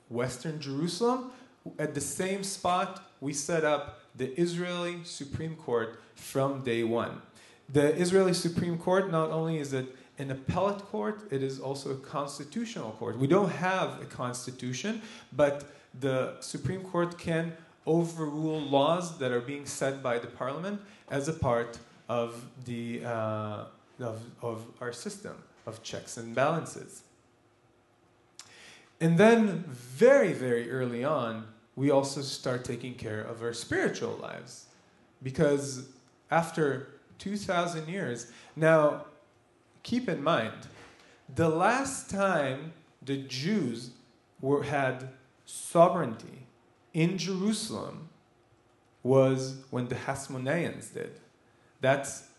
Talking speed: 115 wpm